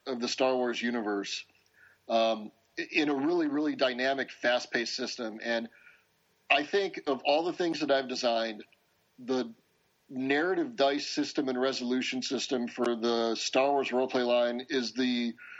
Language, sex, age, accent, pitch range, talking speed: English, male, 40-59, American, 125-145 Hz, 150 wpm